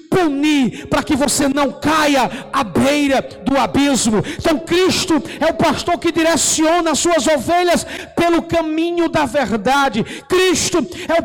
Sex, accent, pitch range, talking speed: male, Brazilian, 245-330 Hz, 145 wpm